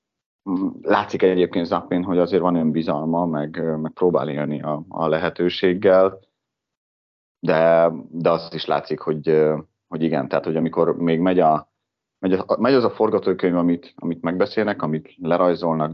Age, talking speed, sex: 30-49, 135 wpm, male